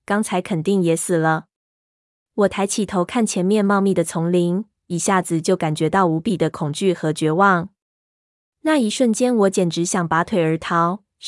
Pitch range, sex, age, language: 170-205 Hz, female, 20-39, Chinese